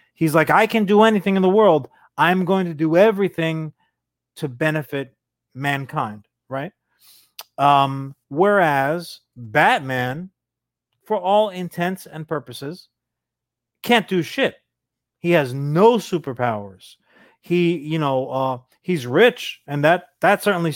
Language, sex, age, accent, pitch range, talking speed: English, male, 30-49, American, 145-195 Hz, 125 wpm